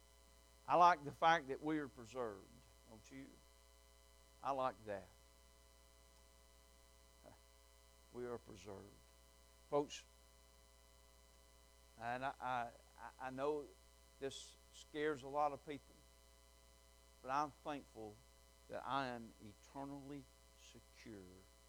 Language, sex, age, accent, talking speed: English, male, 60-79, American, 100 wpm